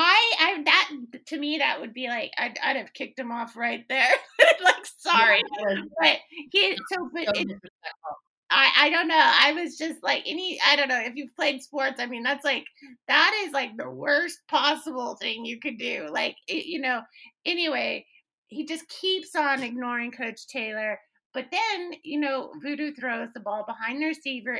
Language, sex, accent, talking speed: English, female, American, 190 wpm